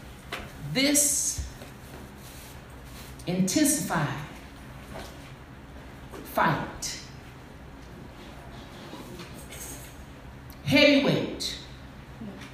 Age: 50-69